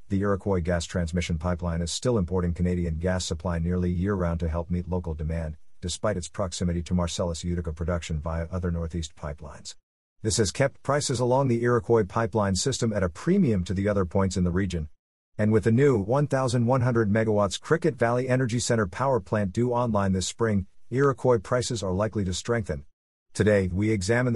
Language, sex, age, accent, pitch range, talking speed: English, male, 50-69, American, 90-115 Hz, 180 wpm